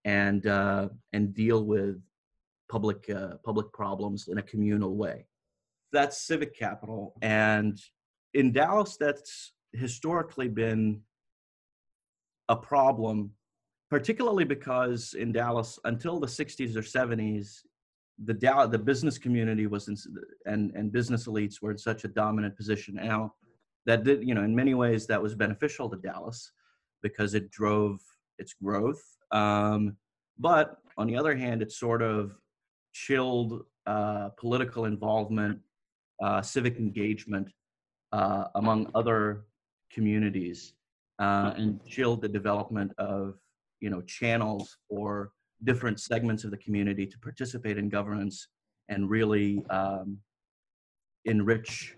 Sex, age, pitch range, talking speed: male, 30-49, 105-120 Hz, 130 wpm